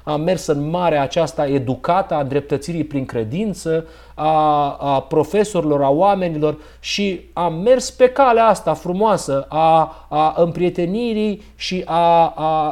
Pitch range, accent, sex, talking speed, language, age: 155-195 Hz, native, male, 130 wpm, Romanian, 30-49